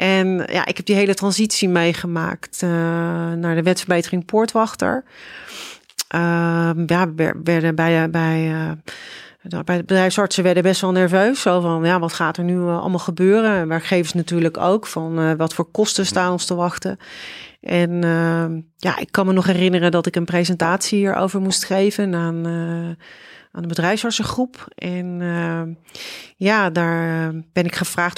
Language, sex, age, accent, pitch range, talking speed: Dutch, female, 30-49, Dutch, 170-190 Hz, 165 wpm